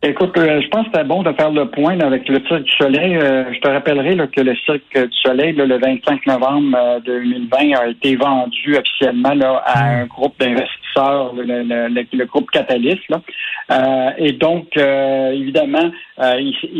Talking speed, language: 195 wpm, French